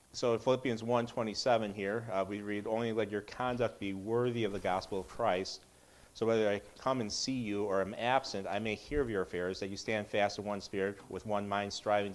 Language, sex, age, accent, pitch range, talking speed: English, male, 40-59, American, 105-130 Hz, 225 wpm